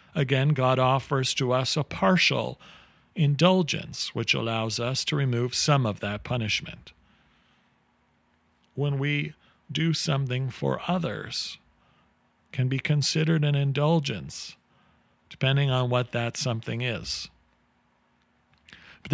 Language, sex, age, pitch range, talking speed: English, male, 50-69, 115-155 Hz, 110 wpm